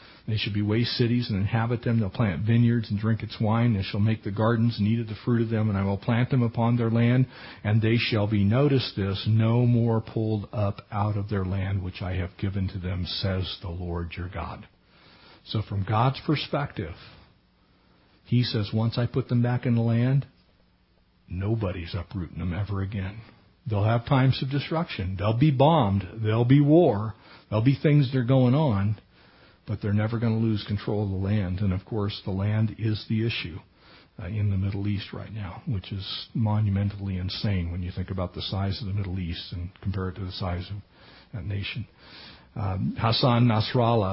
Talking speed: 200 wpm